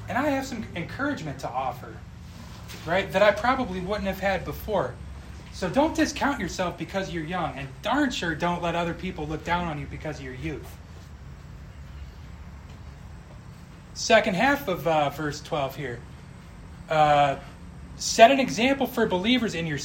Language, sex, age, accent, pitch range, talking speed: English, male, 30-49, American, 140-200 Hz, 155 wpm